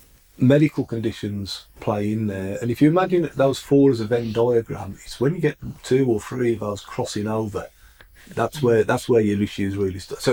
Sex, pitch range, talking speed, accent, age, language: male, 100-125 Hz, 205 wpm, British, 40-59, English